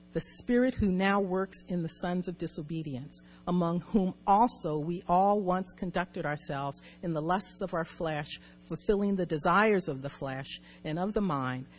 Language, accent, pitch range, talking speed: English, American, 150-200 Hz, 175 wpm